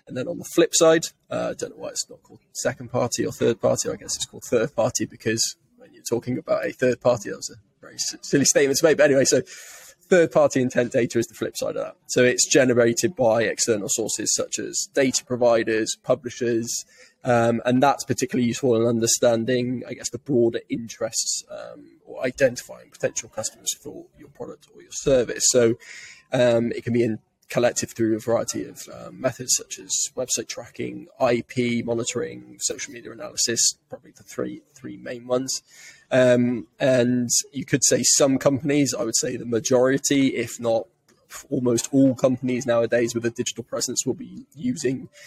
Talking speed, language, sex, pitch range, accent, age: 190 wpm, English, male, 115-130 Hz, British, 20-39